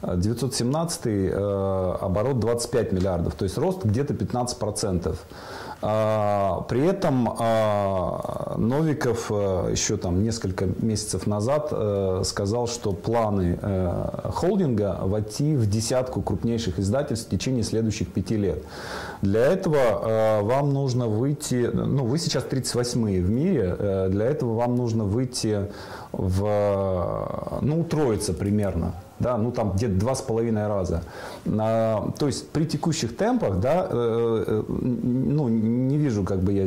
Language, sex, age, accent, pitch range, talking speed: Russian, male, 30-49, native, 100-130 Hz, 120 wpm